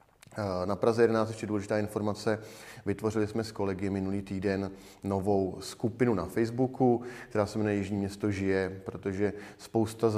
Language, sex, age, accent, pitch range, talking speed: Czech, male, 30-49, native, 95-100 Hz, 145 wpm